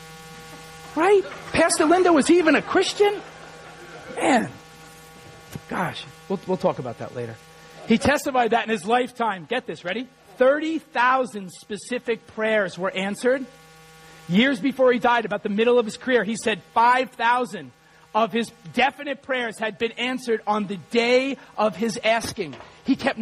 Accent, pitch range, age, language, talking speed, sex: American, 225-280 Hz, 40-59, English, 150 wpm, male